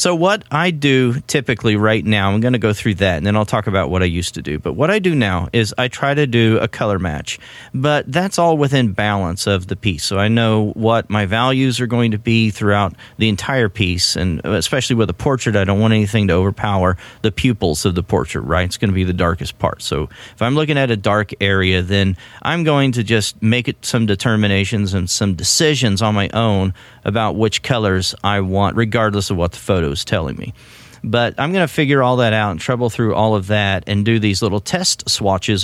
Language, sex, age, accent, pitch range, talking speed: English, male, 40-59, American, 100-130 Hz, 230 wpm